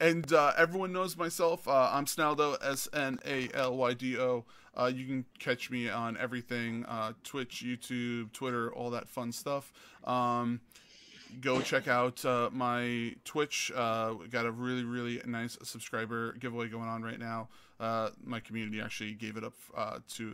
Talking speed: 155 wpm